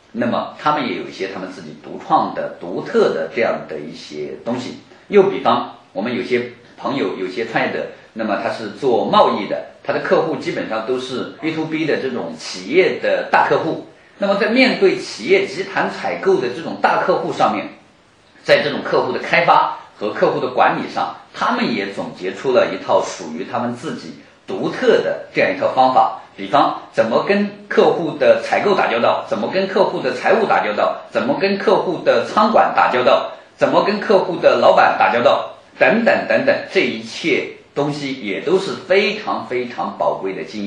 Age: 50-69